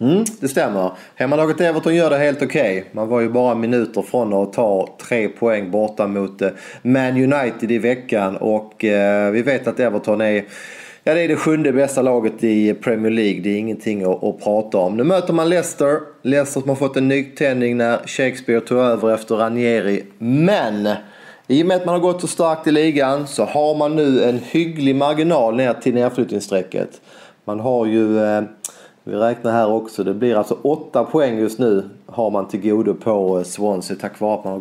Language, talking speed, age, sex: English, 195 wpm, 30-49, male